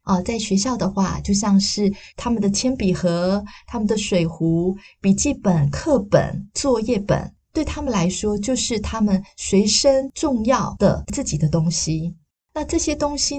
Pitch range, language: 175-225 Hz, Chinese